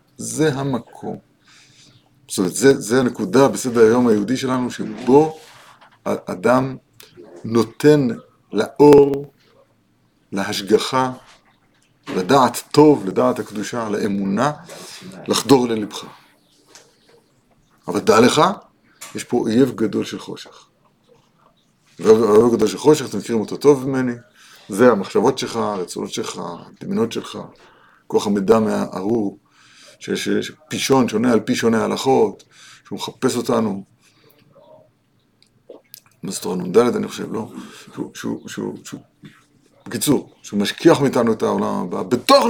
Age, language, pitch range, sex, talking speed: 50-69, Hebrew, 120-200 Hz, male, 115 wpm